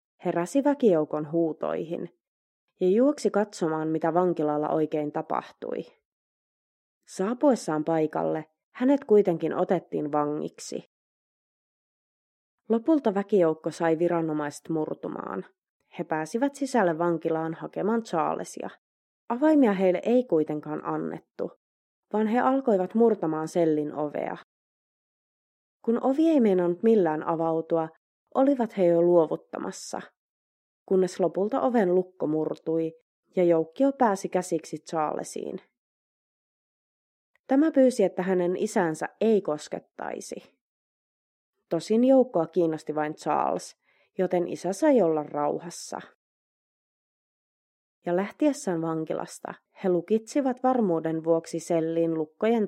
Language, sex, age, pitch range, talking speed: Finnish, female, 30-49, 160-215 Hz, 95 wpm